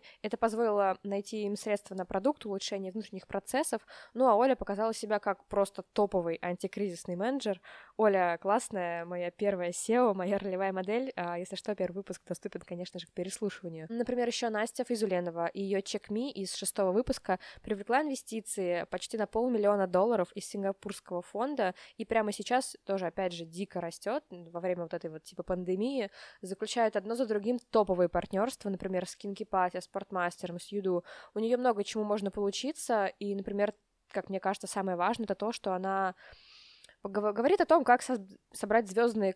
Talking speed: 165 wpm